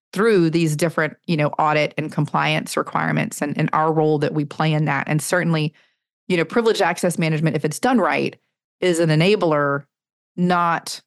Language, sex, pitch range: English, female, 155-180 Hz